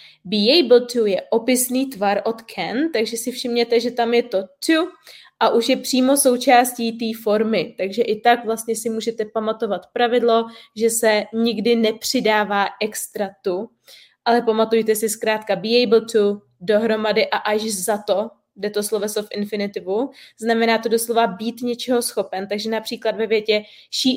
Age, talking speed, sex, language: 20-39, 160 wpm, female, Czech